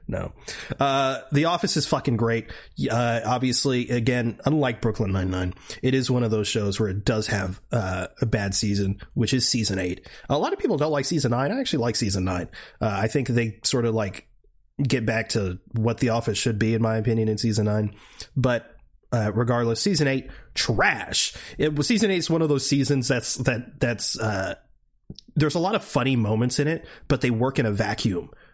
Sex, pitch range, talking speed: male, 105-135 Hz, 205 wpm